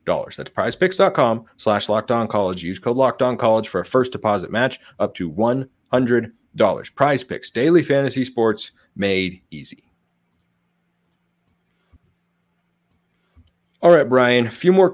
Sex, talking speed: male, 110 wpm